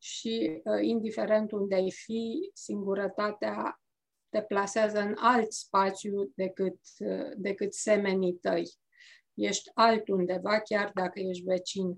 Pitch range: 200-245 Hz